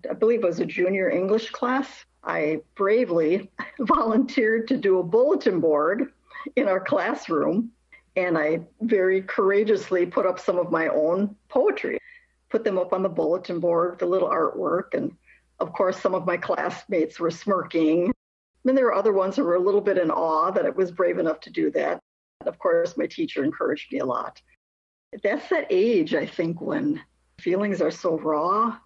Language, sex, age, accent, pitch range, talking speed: English, female, 50-69, American, 170-240 Hz, 185 wpm